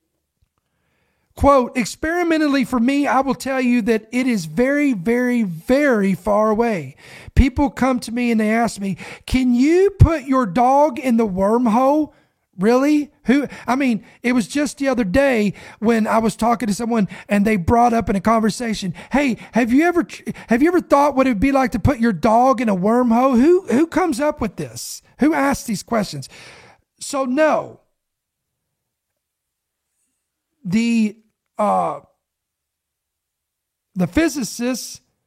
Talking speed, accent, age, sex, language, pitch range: 155 wpm, American, 40-59, male, English, 210-265 Hz